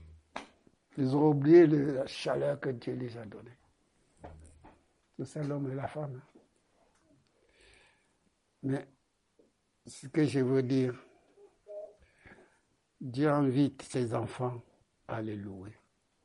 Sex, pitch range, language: male, 110-150 Hz, French